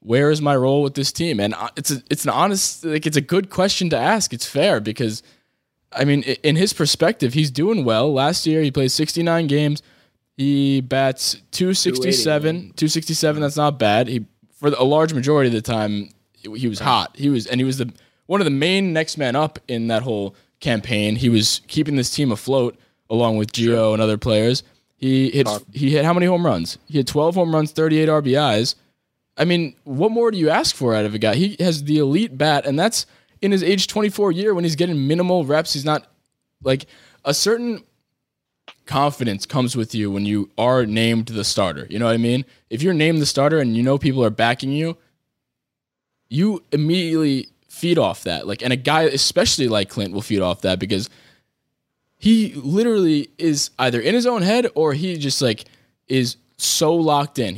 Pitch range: 120-160 Hz